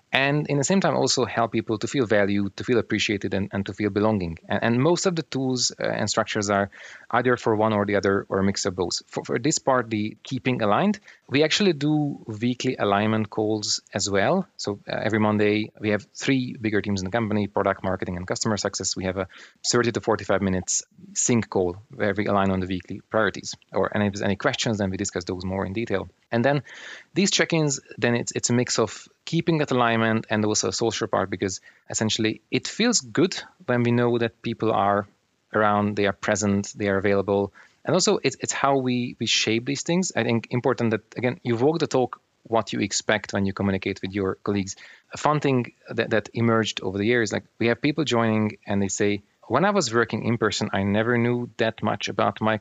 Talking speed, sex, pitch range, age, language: 220 wpm, male, 100-125 Hz, 30-49, English